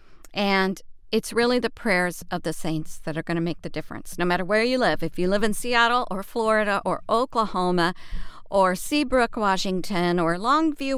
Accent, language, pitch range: American, English, 180-230 Hz